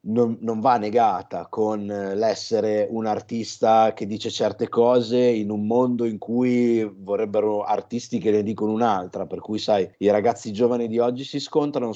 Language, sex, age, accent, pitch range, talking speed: Italian, male, 50-69, native, 105-140 Hz, 165 wpm